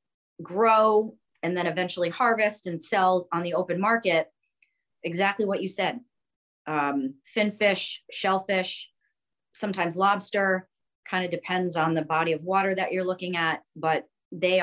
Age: 40-59